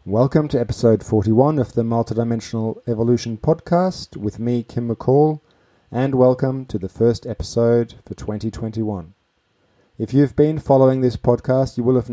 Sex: male